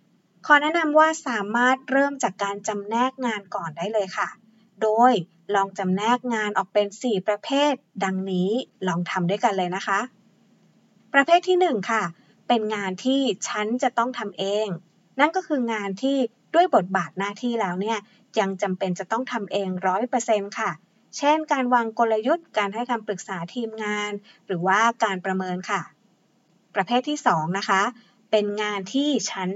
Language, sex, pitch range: Thai, female, 195-245 Hz